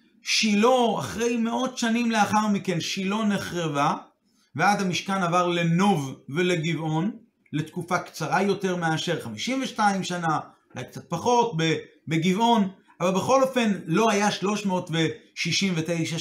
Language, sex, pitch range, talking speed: Hebrew, male, 175-225 Hz, 105 wpm